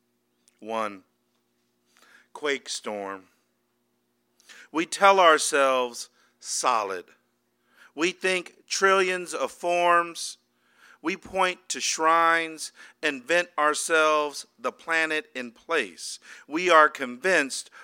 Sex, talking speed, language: male, 85 wpm, English